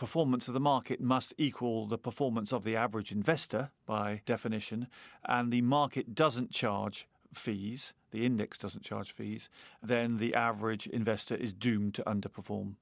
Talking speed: 155 wpm